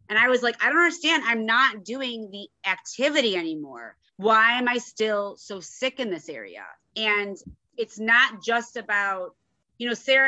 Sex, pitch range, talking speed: female, 200-255 Hz, 175 wpm